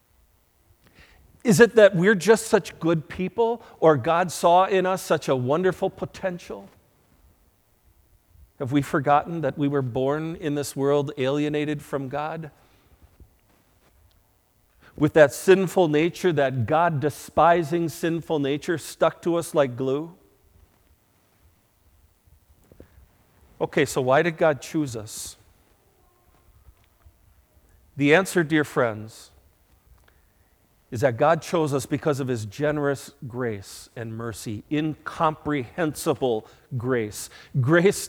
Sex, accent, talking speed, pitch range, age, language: male, American, 110 wpm, 105-175 Hz, 50-69, English